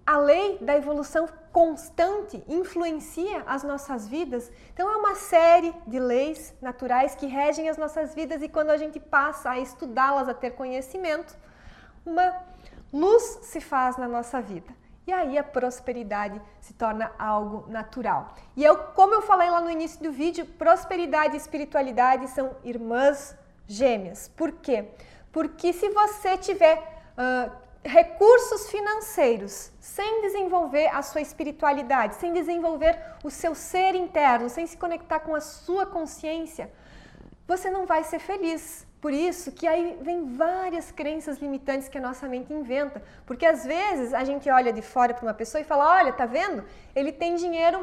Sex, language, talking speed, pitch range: female, English, 155 wpm, 270-345 Hz